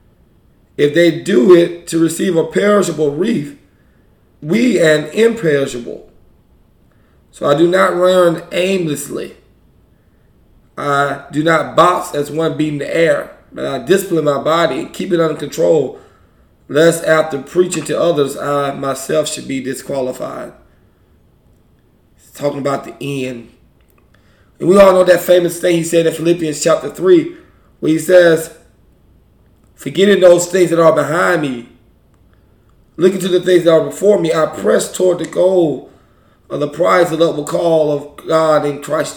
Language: English